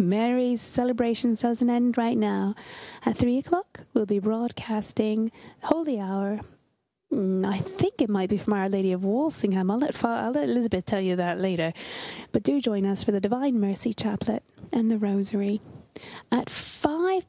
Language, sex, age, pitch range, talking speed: English, female, 30-49, 195-245 Hz, 160 wpm